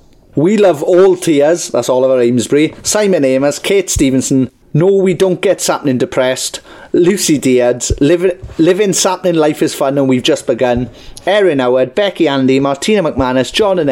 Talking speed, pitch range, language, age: 160 wpm, 130-180 Hz, English, 30-49